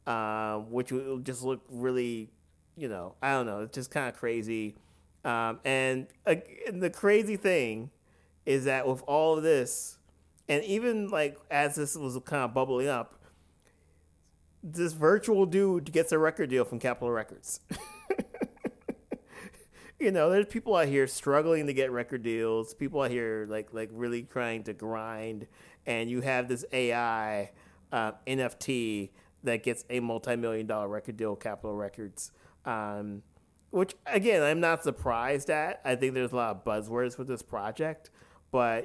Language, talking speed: English, 160 wpm